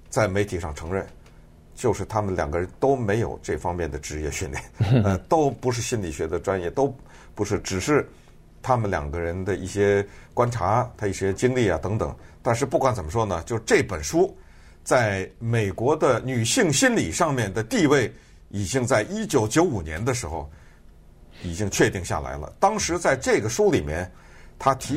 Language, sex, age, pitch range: Chinese, male, 50-69, 90-125 Hz